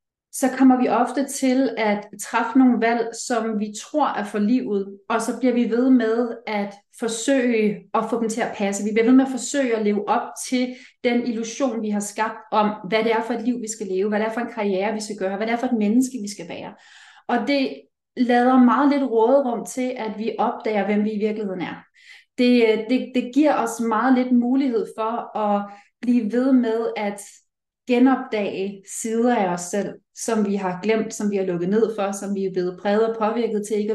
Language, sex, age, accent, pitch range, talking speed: Danish, female, 30-49, native, 210-250 Hz, 220 wpm